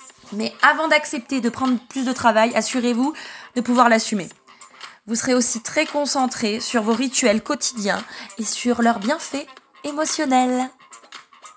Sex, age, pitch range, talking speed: female, 20-39, 220-280 Hz, 135 wpm